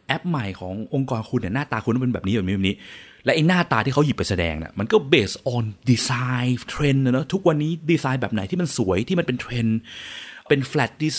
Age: 20-39